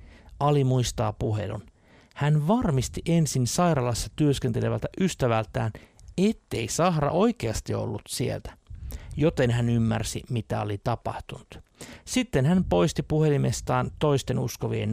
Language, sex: Finnish, male